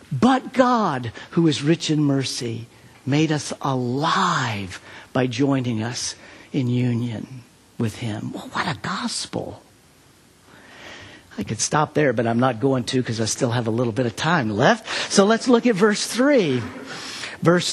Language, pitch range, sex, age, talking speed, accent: English, 125-170 Hz, male, 50-69, 155 wpm, American